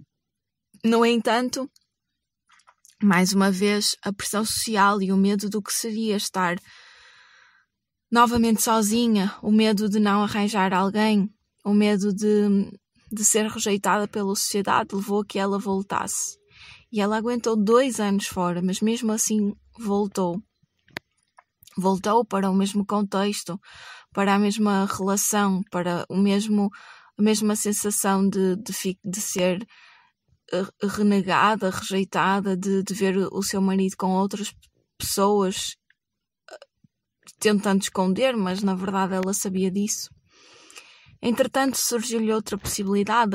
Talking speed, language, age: 125 wpm, Portuguese, 20-39